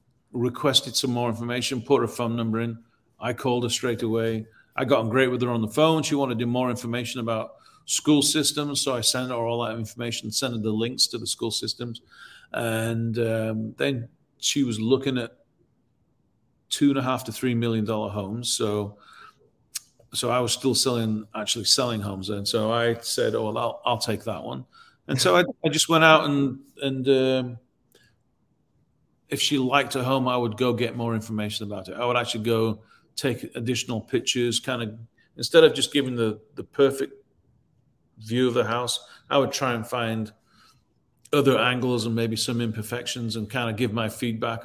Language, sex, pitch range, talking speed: English, male, 110-130 Hz, 190 wpm